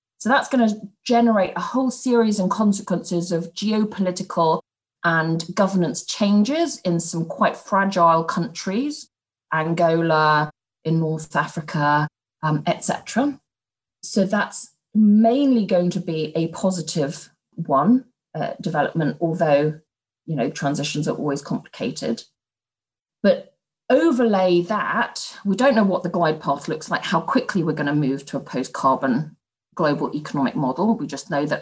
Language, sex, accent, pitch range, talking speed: English, female, British, 150-205 Hz, 135 wpm